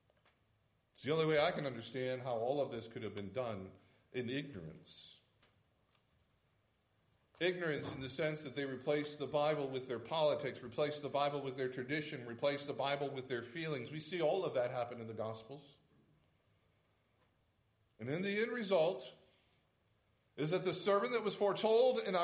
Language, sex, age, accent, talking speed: English, male, 50-69, American, 170 wpm